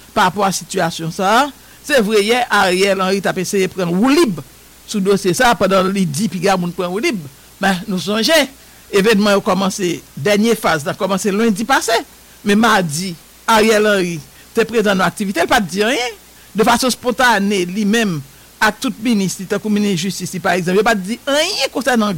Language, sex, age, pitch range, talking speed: English, male, 60-79, 185-230 Hz, 175 wpm